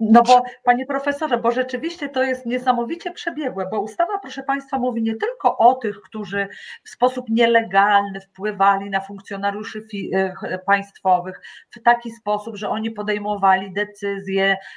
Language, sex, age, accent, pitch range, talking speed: Polish, female, 40-59, native, 200-255 Hz, 140 wpm